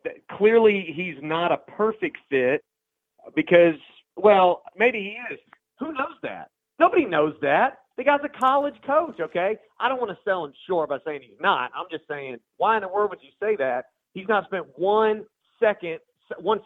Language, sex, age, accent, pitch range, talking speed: English, male, 40-59, American, 155-215 Hz, 185 wpm